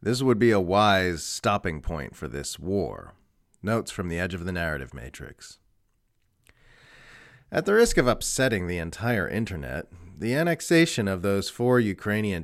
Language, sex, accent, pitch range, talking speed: English, male, American, 95-125 Hz, 155 wpm